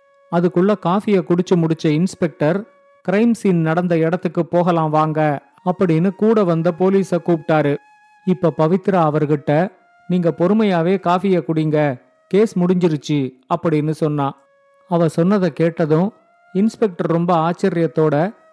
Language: Tamil